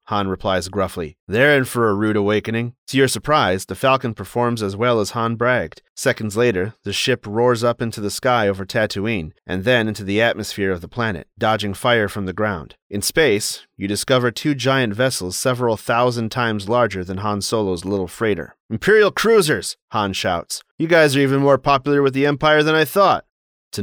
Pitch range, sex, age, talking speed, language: 100-140 Hz, male, 30-49, 195 wpm, English